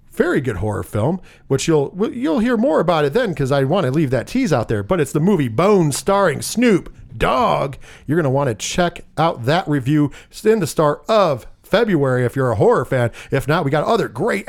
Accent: American